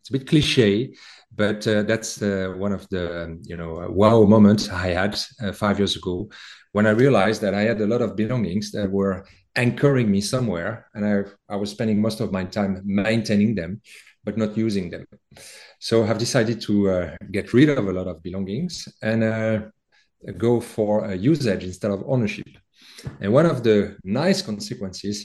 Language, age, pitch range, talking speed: English, 40-59, 100-120 Hz, 190 wpm